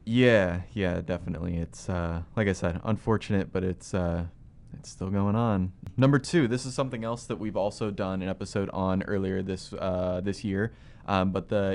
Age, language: 20-39, English